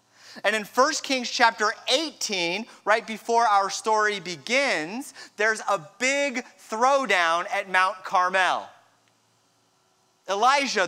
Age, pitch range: 30-49, 195-245 Hz